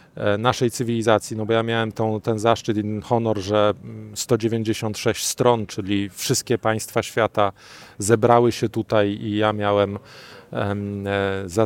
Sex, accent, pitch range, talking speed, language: male, native, 105-120 Hz, 140 wpm, Polish